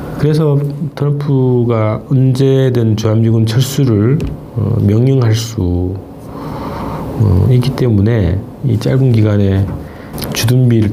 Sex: male